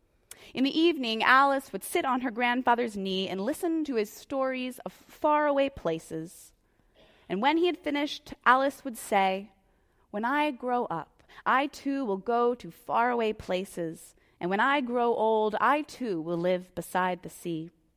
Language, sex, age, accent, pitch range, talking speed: English, female, 20-39, American, 190-270 Hz, 165 wpm